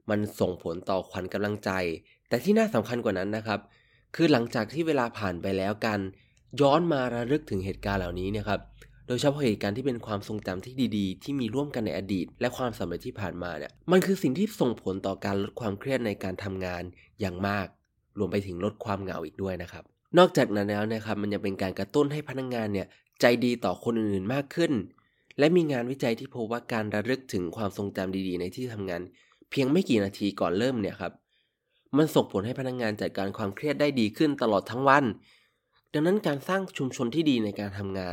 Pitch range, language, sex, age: 95-125 Hz, Thai, male, 20-39